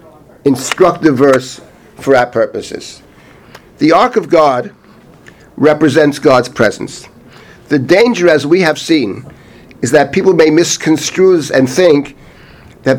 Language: English